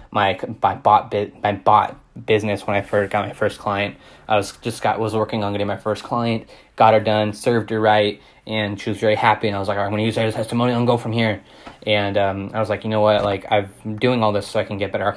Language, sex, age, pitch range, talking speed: English, male, 10-29, 100-110 Hz, 290 wpm